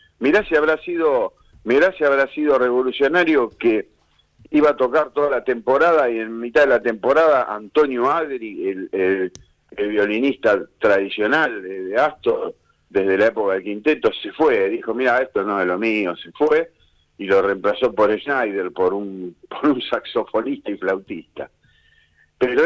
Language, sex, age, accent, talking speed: Spanish, male, 50-69, Argentinian, 160 wpm